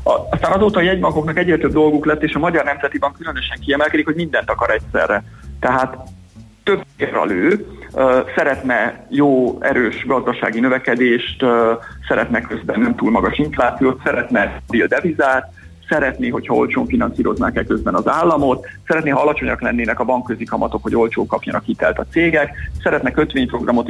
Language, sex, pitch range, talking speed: Hungarian, male, 125-180 Hz, 140 wpm